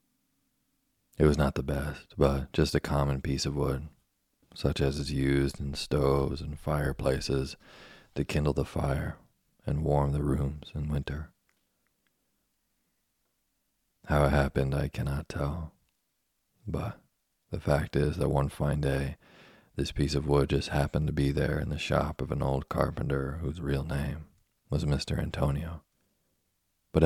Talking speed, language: 150 wpm, English